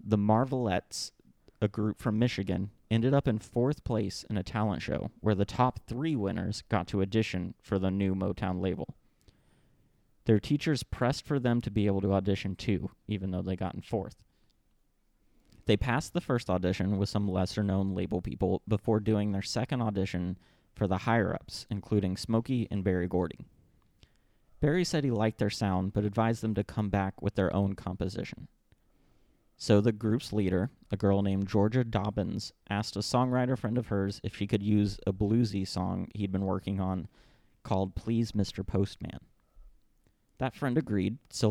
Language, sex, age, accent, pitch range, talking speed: English, male, 30-49, American, 95-115 Hz, 170 wpm